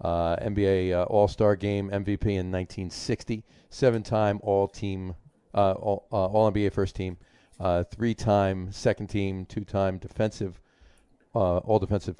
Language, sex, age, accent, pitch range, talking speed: English, male, 40-59, American, 95-115 Hz, 120 wpm